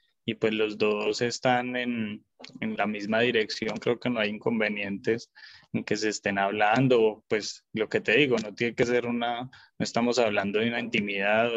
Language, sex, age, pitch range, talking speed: Spanish, male, 20-39, 110-125 Hz, 190 wpm